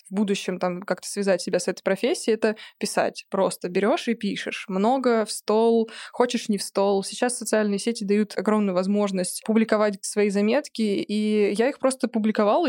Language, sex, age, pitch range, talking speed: Russian, female, 20-39, 200-230 Hz, 170 wpm